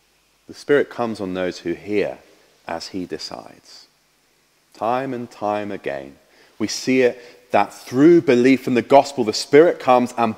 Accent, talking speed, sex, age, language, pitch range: British, 155 wpm, male, 30-49, English, 115-165 Hz